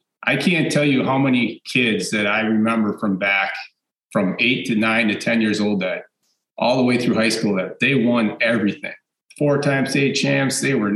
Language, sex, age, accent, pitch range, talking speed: English, male, 40-59, American, 100-120 Hz, 205 wpm